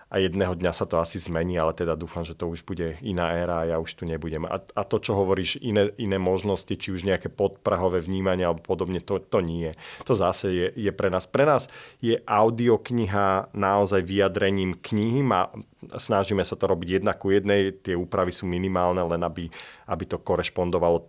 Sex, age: male, 30-49